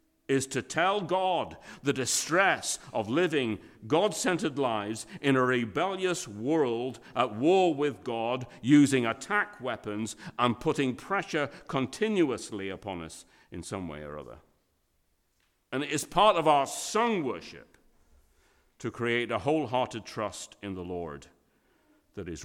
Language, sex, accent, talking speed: English, male, British, 135 wpm